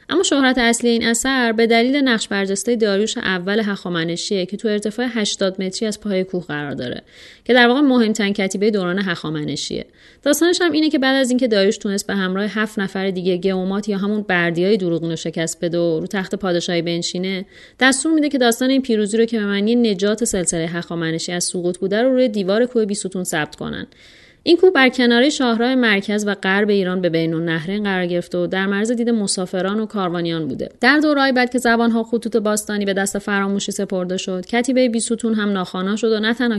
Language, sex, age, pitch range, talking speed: Persian, female, 30-49, 185-230 Hz, 195 wpm